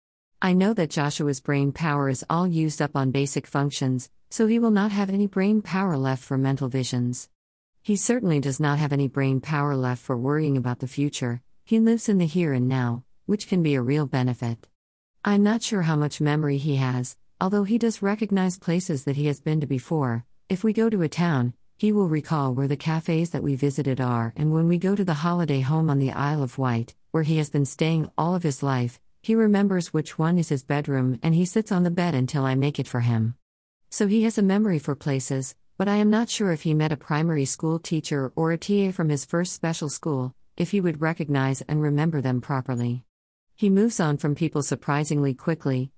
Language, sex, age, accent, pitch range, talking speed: English, female, 50-69, American, 130-175 Hz, 220 wpm